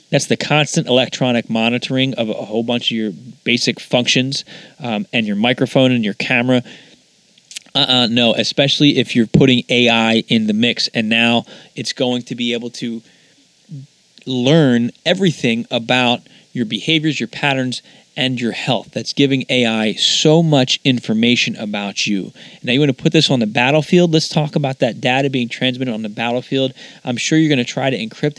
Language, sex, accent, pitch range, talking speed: English, male, American, 120-145 Hz, 175 wpm